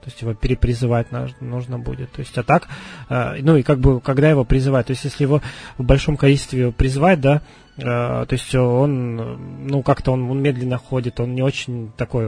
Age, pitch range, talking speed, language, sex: 20-39, 120-140 Hz, 190 wpm, Russian, male